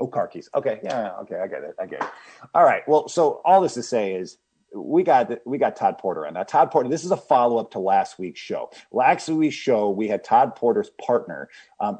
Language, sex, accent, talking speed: English, male, American, 245 wpm